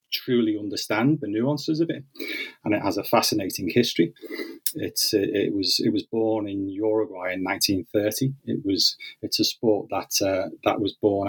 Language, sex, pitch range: English, male, 100-120 Hz